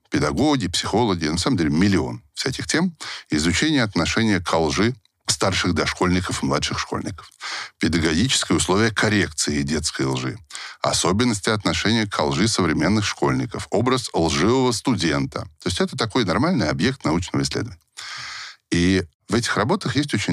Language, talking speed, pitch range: Russian, 135 wpm, 80-115 Hz